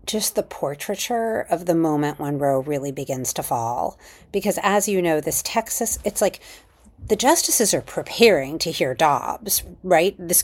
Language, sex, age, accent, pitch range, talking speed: English, female, 40-59, American, 150-205 Hz, 165 wpm